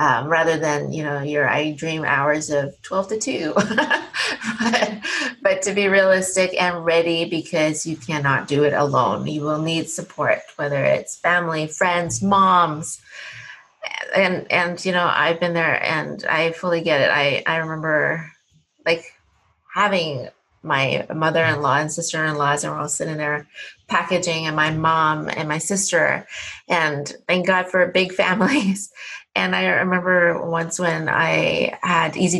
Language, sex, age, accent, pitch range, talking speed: English, female, 30-49, American, 155-185 Hz, 150 wpm